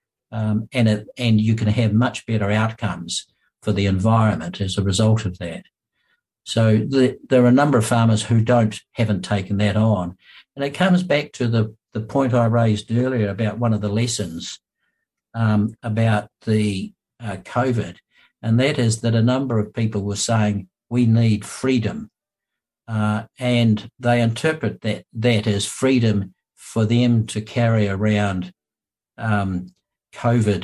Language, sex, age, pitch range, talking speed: English, male, 60-79, 105-120 Hz, 160 wpm